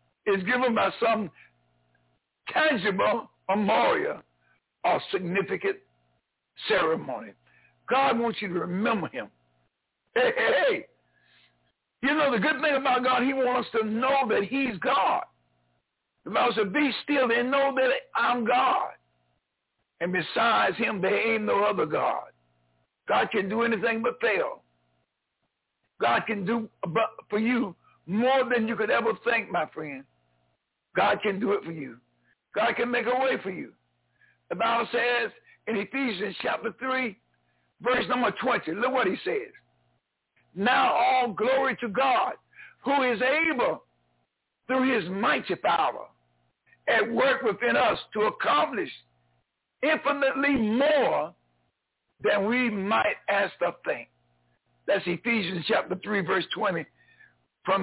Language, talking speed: English, 135 wpm